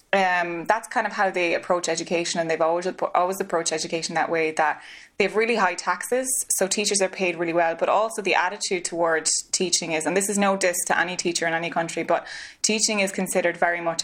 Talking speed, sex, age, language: 220 wpm, female, 20-39, English